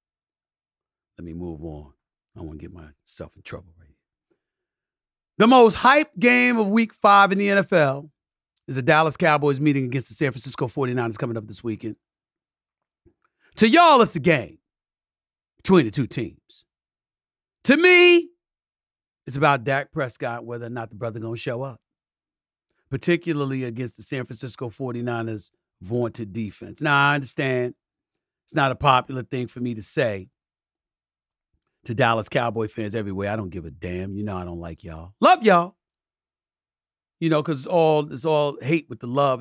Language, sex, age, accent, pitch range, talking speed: English, male, 40-59, American, 115-150 Hz, 165 wpm